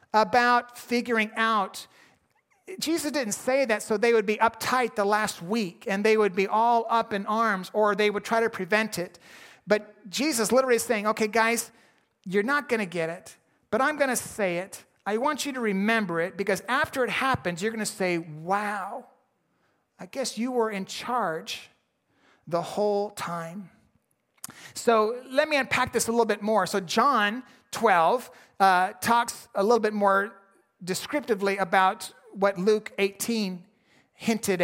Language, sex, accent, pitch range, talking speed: English, male, American, 200-245 Hz, 170 wpm